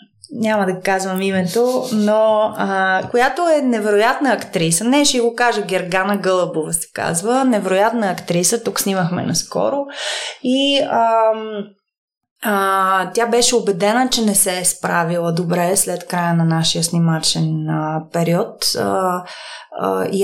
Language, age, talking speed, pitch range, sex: Bulgarian, 20-39, 135 wpm, 175-210 Hz, female